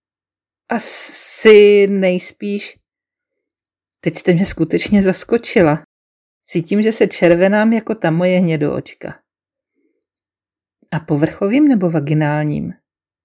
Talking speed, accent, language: 90 wpm, native, Czech